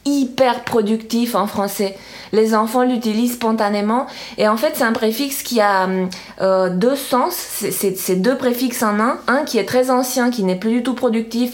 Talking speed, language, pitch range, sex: 190 wpm, French, 195-240 Hz, female